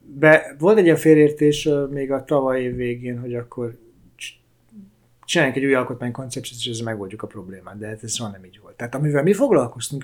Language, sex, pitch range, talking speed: Hungarian, male, 115-145 Hz, 190 wpm